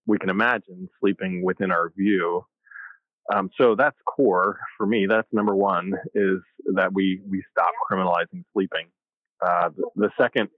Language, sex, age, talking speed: English, male, 30-49, 155 wpm